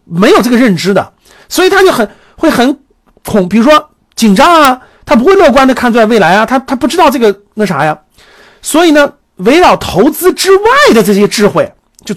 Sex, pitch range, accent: male, 205-300 Hz, native